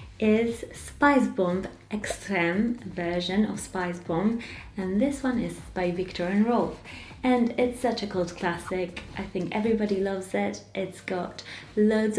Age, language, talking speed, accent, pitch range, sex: 20-39, English, 150 wpm, British, 170-200 Hz, female